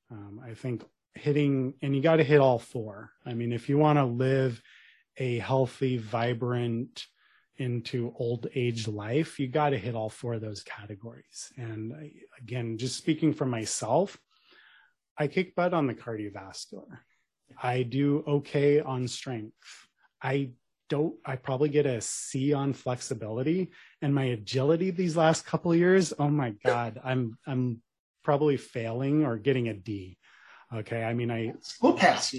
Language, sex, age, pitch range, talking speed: English, male, 30-49, 120-150 Hz, 155 wpm